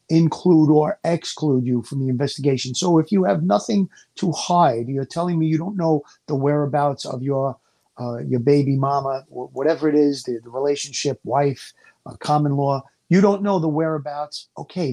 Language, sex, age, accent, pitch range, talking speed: English, male, 50-69, American, 135-170 Hz, 180 wpm